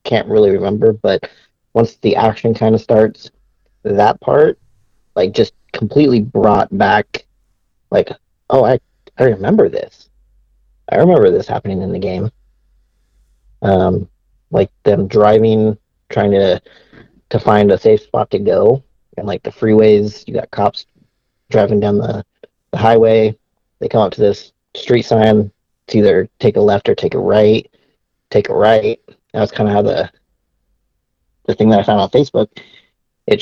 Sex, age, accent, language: male, 30-49, American, English